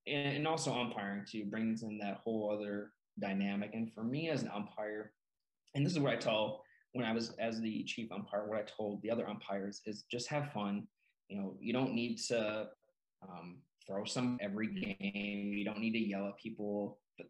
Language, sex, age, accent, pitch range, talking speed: English, male, 20-39, American, 100-125 Hz, 200 wpm